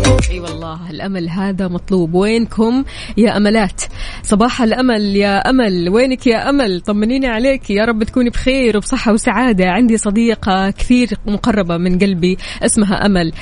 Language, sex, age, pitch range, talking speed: Arabic, female, 20-39, 185-230 Hz, 145 wpm